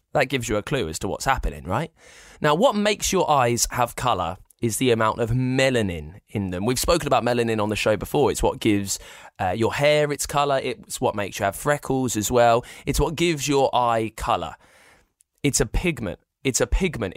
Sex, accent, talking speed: male, British, 210 wpm